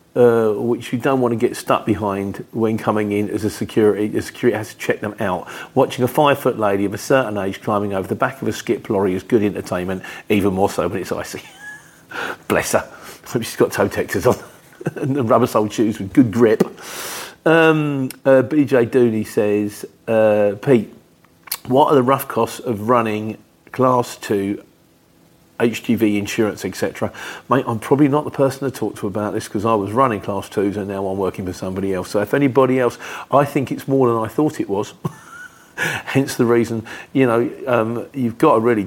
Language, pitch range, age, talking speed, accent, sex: English, 105-135 Hz, 40-59, 195 wpm, British, male